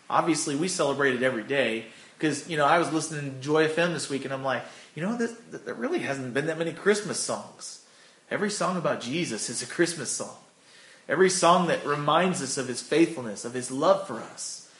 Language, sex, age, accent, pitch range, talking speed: English, male, 30-49, American, 140-185 Hz, 205 wpm